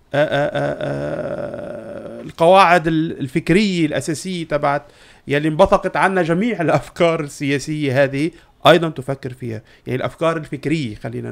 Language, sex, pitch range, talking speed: Arabic, male, 135-180 Hz, 110 wpm